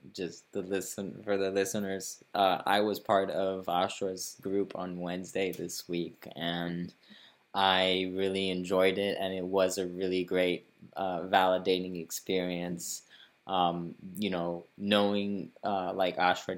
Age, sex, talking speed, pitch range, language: 20-39, male, 140 wpm, 90-105 Hz, English